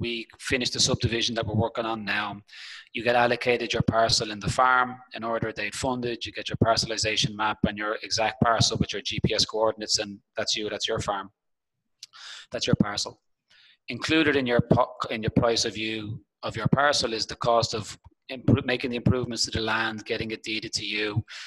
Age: 30-49